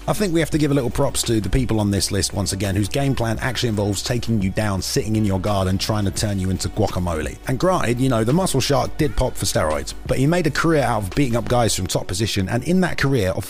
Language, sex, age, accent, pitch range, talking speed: English, male, 30-49, British, 100-140 Hz, 285 wpm